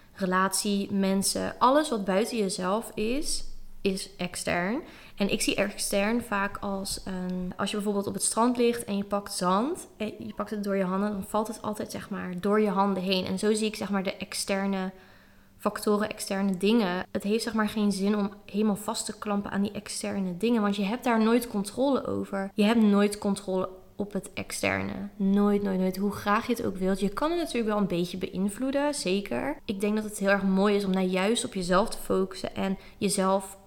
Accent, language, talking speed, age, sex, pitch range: Dutch, Dutch, 210 wpm, 20-39, female, 195-220 Hz